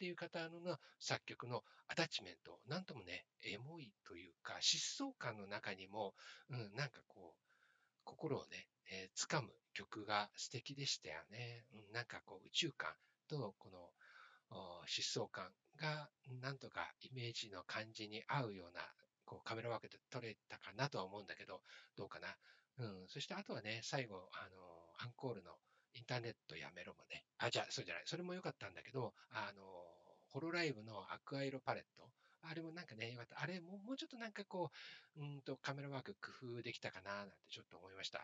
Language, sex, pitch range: Japanese, male, 105-155 Hz